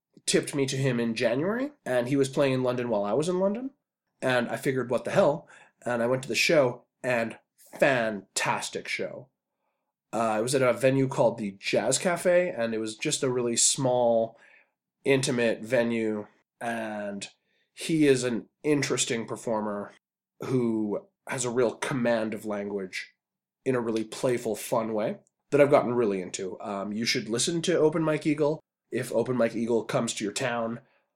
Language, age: English, 20-39